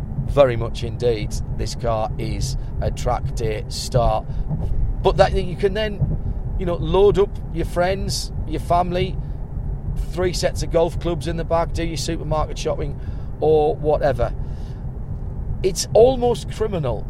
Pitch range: 125-150 Hz